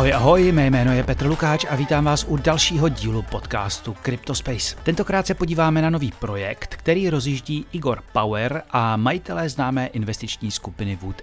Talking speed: 160 wpm